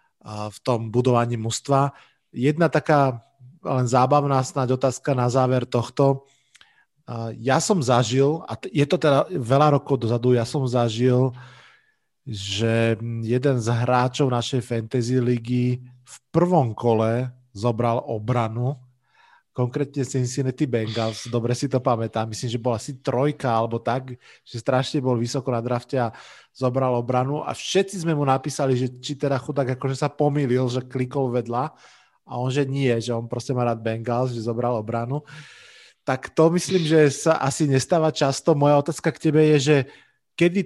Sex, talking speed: male, 155 wpm